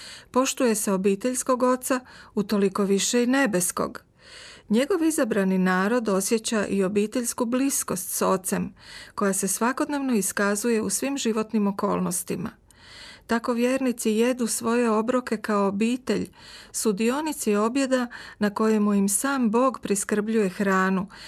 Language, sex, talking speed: Croatian, female, 120 wpm